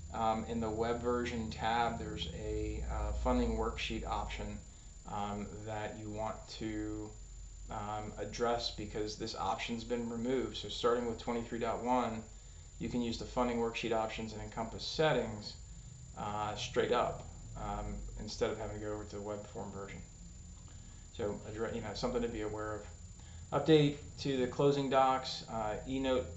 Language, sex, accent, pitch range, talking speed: English, male, American, 105-120 Hz, 155 wpm